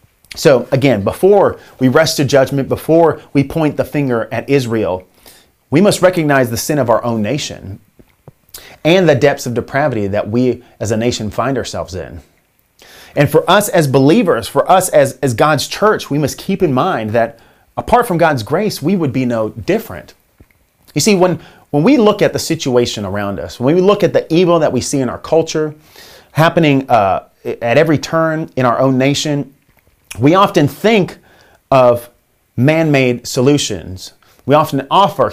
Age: 30-49